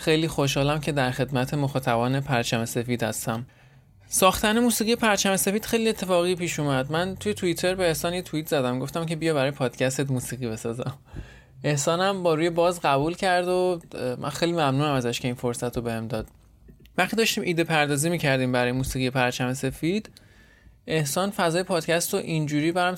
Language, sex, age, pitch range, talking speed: Persian, male, 20-39, 125-175 Hz, 165 wpm